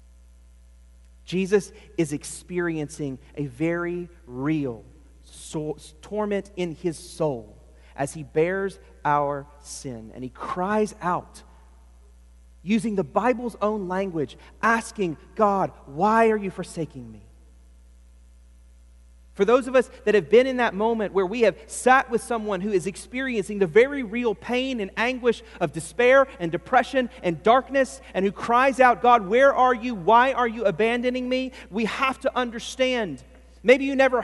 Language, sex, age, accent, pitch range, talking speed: English, male, 30-49, American, 160-255 Hz, 145 wpm